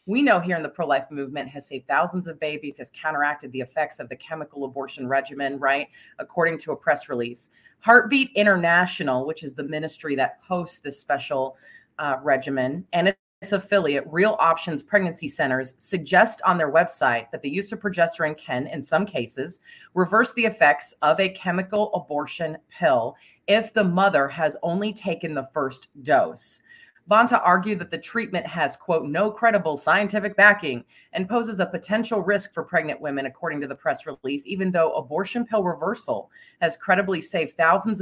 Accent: American